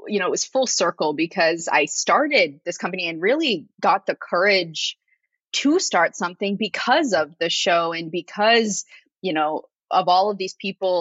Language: English